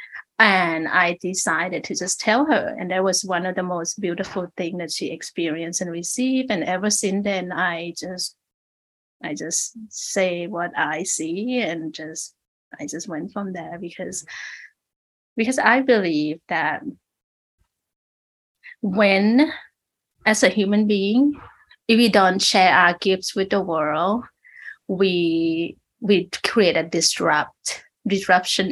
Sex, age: female, 30-49